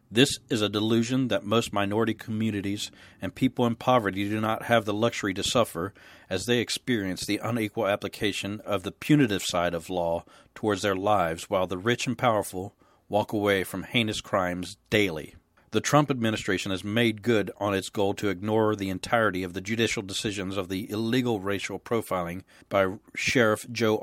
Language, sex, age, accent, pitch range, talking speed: English, male, 40-59, American, 100-120 Hz, 175 wpm